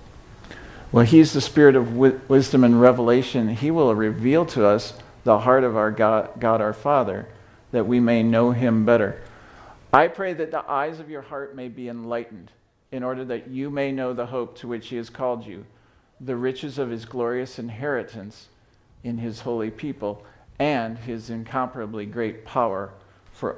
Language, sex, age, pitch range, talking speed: English, male, 50-69, 110-130 Hz, 175 wpm